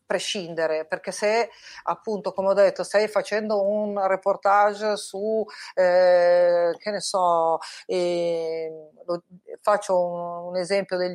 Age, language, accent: 40-59, Italian, native